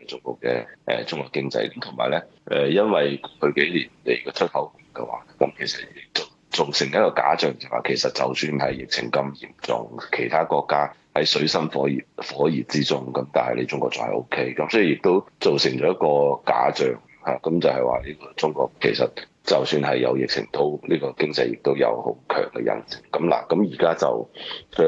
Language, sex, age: Chinese, male, 30-49